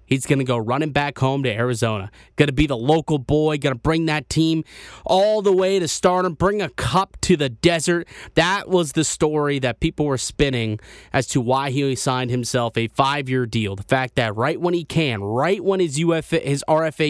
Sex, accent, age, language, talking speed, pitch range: male, American, 20-39, English, 210 wpm, 120-165 Hz